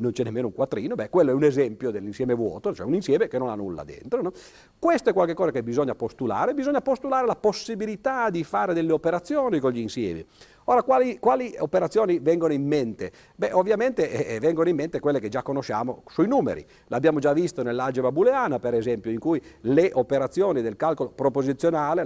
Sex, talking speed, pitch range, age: male, 195 wpm, 120-190 Hz, 50-69